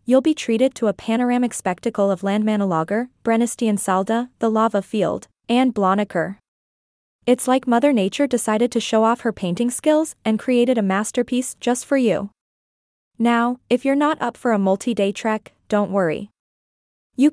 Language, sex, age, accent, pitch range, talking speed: English, female, 20-39, American, 200-250 Hz, 160 wpm